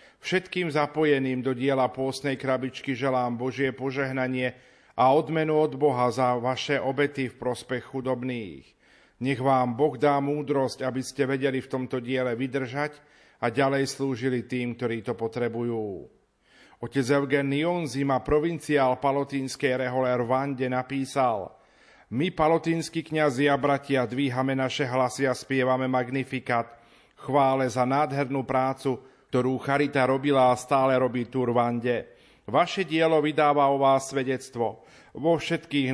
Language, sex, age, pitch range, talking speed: Slovak, male, 40-59, 125-145 Hz, 125 wpm